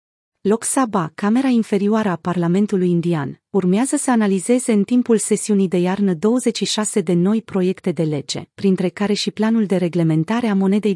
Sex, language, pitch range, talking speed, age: female, Romanian, 180-220 Hz, 160 wpm, 30-49